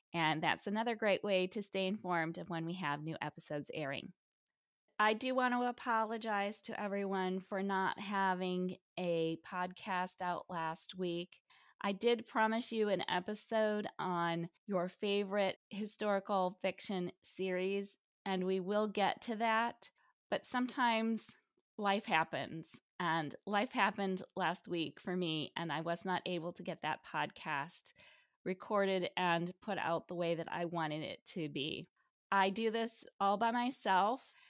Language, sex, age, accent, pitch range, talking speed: English, female, 20-39, American, 175-215 Hz, 150 wpm